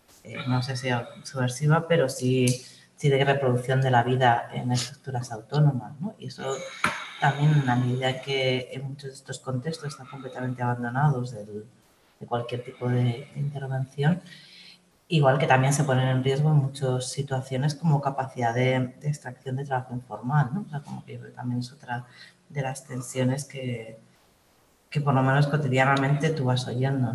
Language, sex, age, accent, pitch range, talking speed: Spanish, female, 30-49, Spanish, 125-145 Hz, 165 wpm